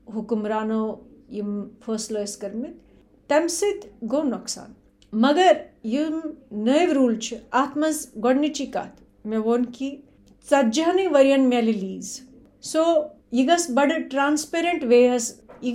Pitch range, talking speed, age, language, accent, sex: 235-300 Hz, 115 wpm, 50-69, English, Indian, female